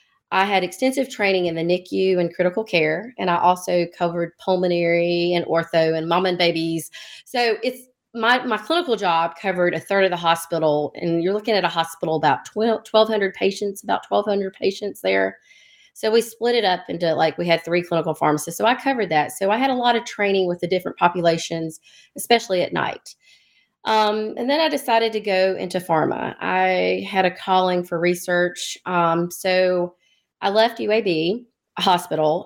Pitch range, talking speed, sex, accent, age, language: 175-215 Hz, 180 wpm, female, American, 30-49, English